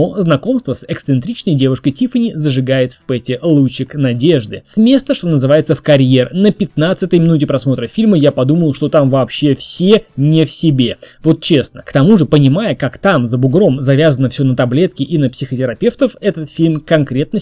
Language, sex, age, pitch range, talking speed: Russian, male, 20-39, 135-185 Hz, 170 wpm